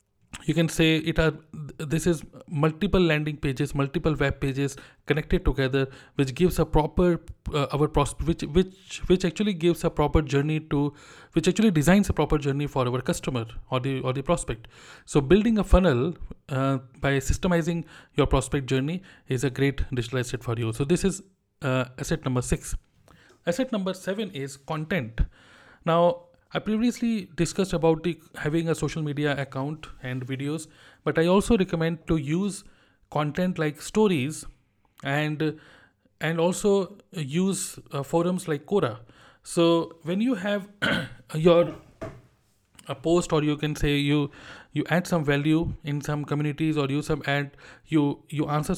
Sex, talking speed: male, 160 wpm